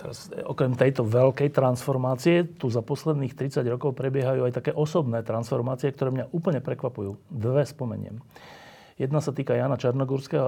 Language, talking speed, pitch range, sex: Slovak, 145 wpm, 110-135 Hz, male